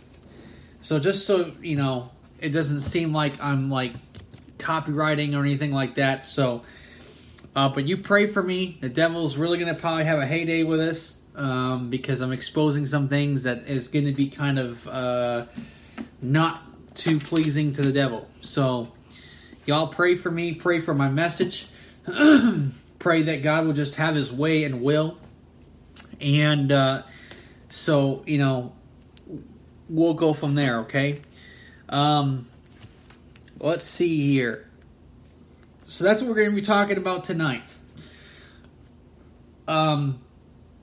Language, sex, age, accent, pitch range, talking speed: English, male, 20-39, American, 130-165 Hz, 145 wpm